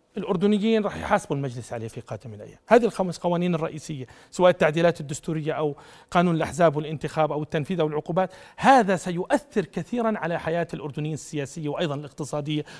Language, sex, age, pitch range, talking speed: Arabic, male, 40-59, 150-200 Hz, 145 wpm